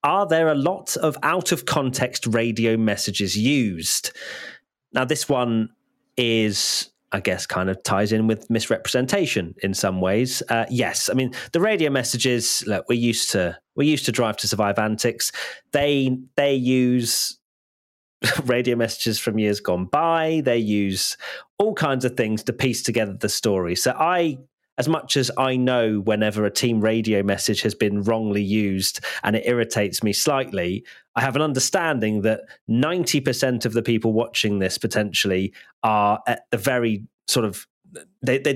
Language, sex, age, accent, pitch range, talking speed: English, male, 30-49, British, 105-130 Hz, 160 wpm